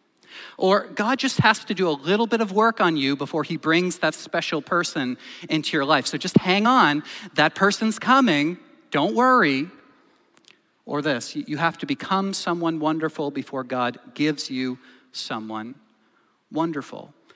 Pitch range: 150-220 Hz